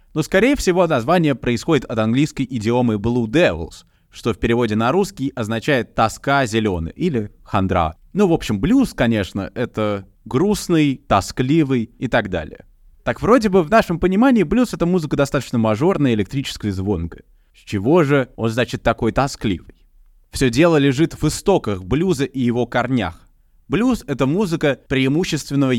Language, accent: Russian, native